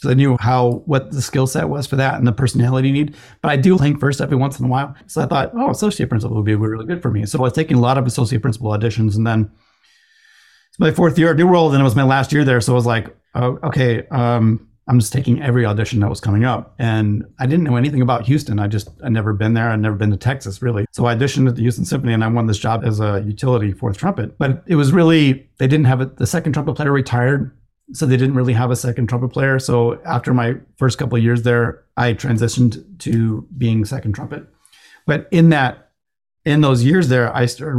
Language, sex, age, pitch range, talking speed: English, male, 30-49, 115-135 Hz, 250 wpm